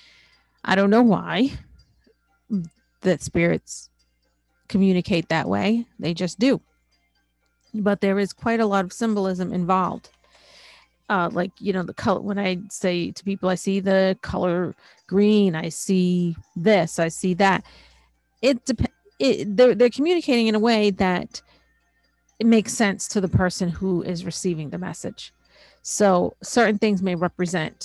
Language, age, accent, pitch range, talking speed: English, 40-59, American, 170-205 Hz, 145 wpm